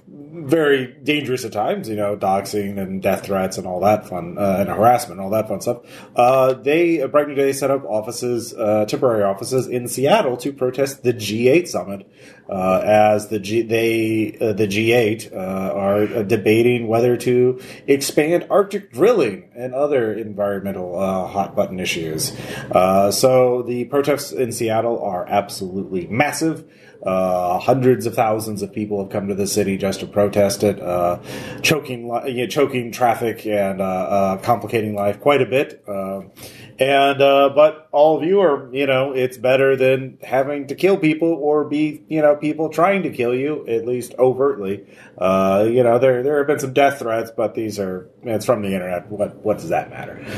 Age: 30-49